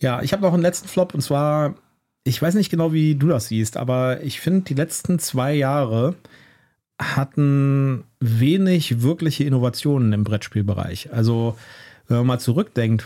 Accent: German